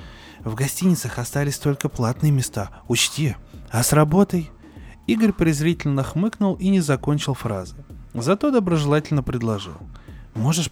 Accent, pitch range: native, 120-170 Hz